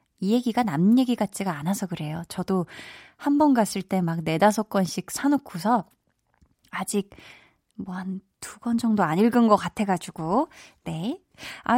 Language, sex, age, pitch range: Korean, female, 20-39, 180-245 Hz